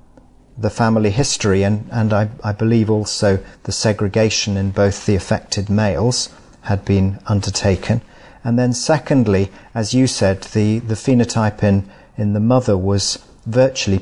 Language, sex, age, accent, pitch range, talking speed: English, male, 40-59, British, 100-120 Hz, 145 wpm